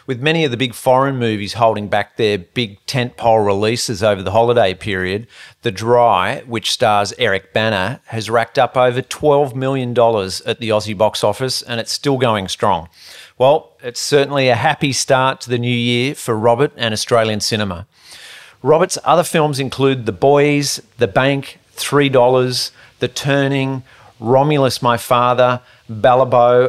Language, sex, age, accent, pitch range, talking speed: English, male, 40-59, Australian, 110-130 Hz, 155 wpm